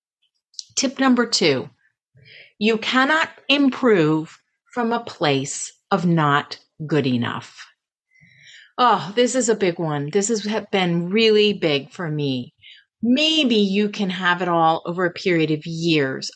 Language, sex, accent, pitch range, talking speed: English, female, American, 165-245 Hz, 135 wpm